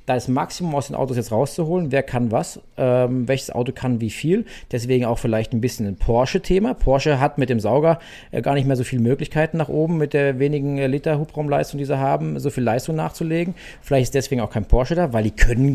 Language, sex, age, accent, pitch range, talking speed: German, male, 40-59, German, 125-160 Hz, 225 wpm